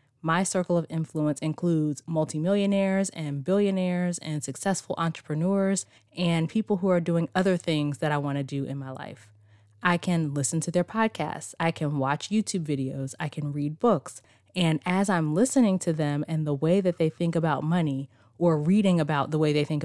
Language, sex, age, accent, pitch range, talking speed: English, female, 20-39, American, 145-180 Hz, 185 wpm